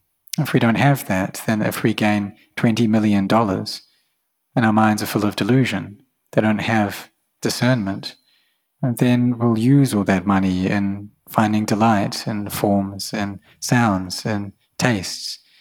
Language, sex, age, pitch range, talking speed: English, male, 30-49, 105-120 Hz, 140 wpm